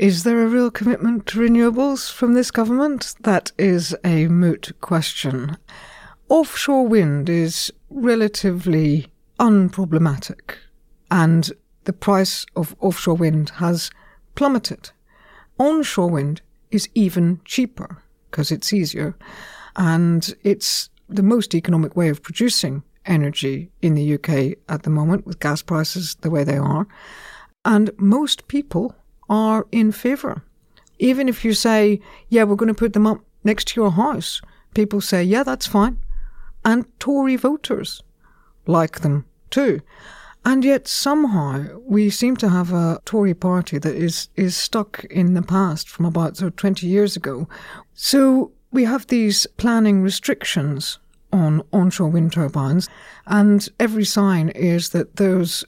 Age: 60-79